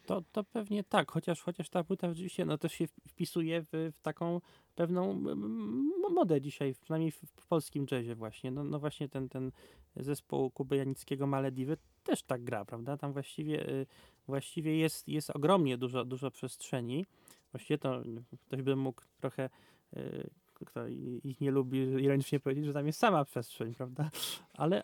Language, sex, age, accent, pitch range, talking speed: Polish, male, 20-39, native, 130-155 Hz, 155 wpm